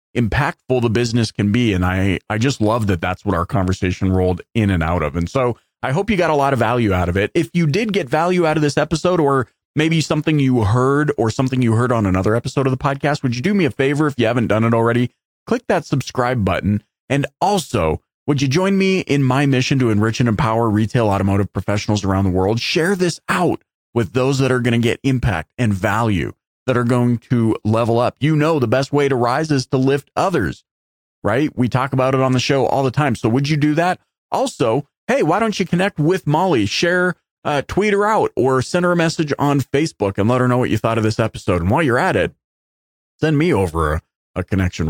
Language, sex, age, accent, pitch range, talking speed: English, male, 30-49, American, 105-145 Hz, 240 wpm